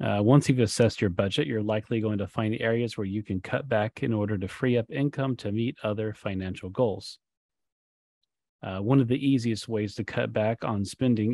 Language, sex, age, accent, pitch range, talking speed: English, male, 30-49, American, 100-120 Hz, 205 wpm